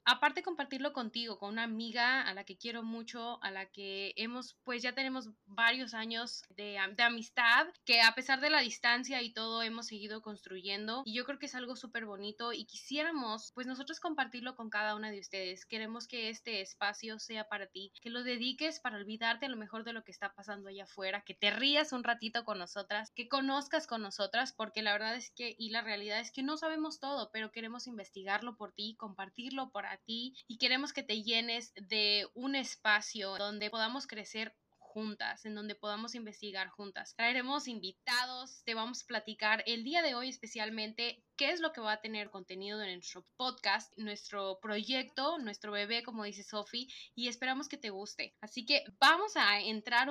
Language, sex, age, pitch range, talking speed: Spanish, female, 10-29, 210-250 Hz, 195 wpm